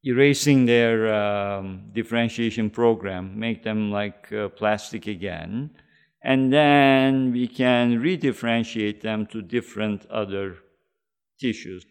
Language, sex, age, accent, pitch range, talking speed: English, male, 50-69, Turkish, 105-125 Hz, 105 wpm